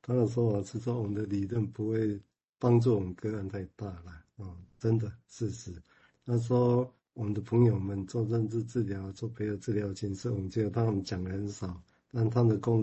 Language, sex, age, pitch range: Chinese, male, 50-69, 100-125 Hz